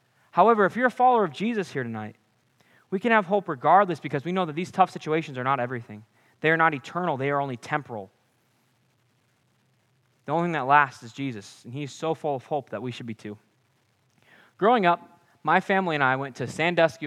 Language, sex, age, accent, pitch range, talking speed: English, male, 20-39, American, 120-180 Hz, 205 wpm